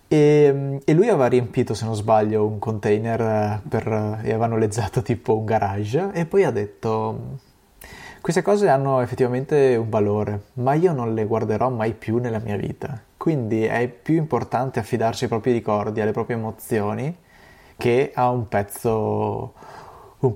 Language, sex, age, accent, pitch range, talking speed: Italian, male, 20-39, native, 115-140 Hz, 155 wpm